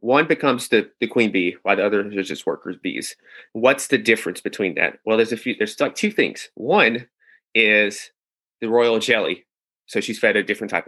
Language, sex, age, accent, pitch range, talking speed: English, male, 30-49, American, 105-135 Hz, 205 wpm